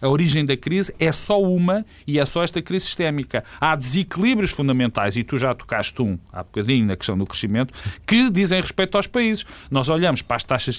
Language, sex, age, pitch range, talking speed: Portuguese, male, 40-59, 110-180 Hz, 205 wpm